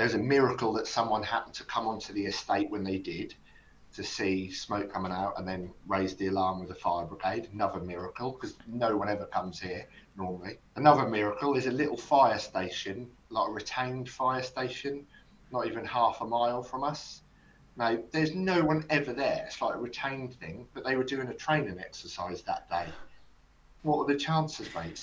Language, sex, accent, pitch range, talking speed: English, male, British, 100-140 Hz, 195 wpm